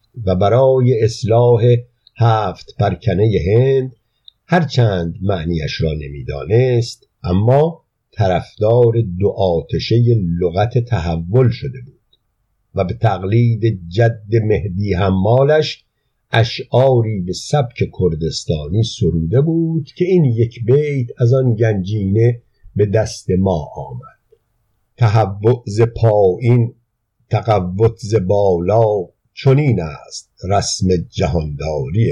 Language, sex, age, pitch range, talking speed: Persian, male, 50-69, 100-130 Hz, 90 wpm